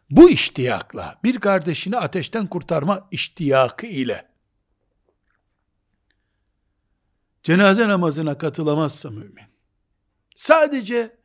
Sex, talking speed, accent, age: male, 70 wpm, native, 60-79